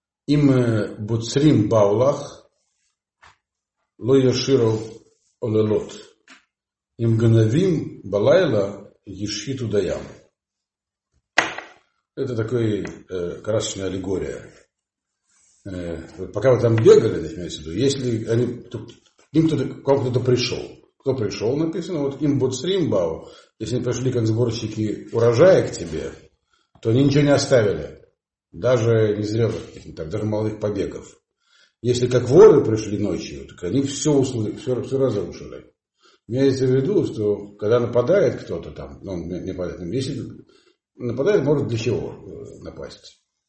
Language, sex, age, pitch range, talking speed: Russian, male, 50-69, 105-135 Hz, 115 wpm